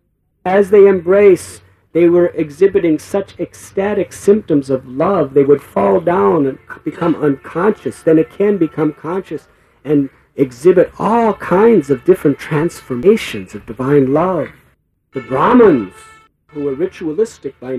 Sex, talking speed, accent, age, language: male, 130 wpm, American, 50-69, English